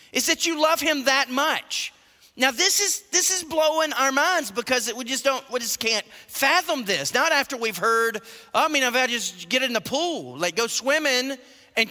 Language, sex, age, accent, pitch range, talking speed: English, male, 40-59, American, 215-275 Hz, 215 wpm